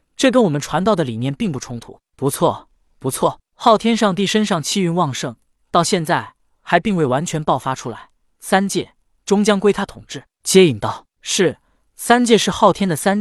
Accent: native